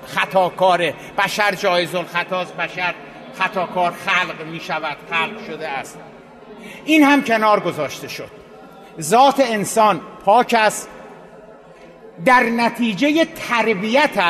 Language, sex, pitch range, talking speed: Persian, male, 200-245 Hz, 100 wpm